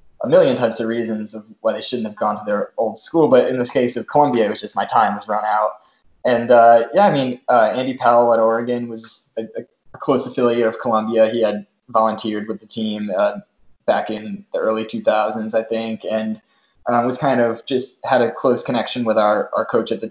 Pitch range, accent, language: 110-125 Hz, American, English